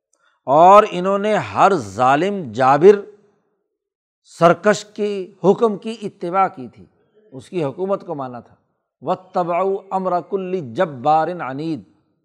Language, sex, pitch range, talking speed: Urdu, male, 150-190 Hz, 120 wpm